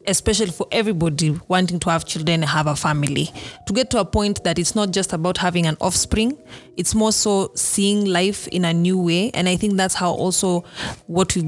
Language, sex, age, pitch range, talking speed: English, female, 30-49, 165-200 Hz, 215 wpm